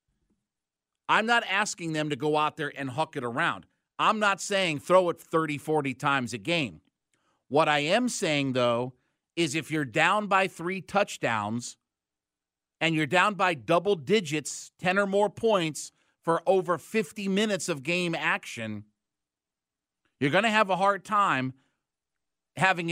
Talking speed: 155 wpm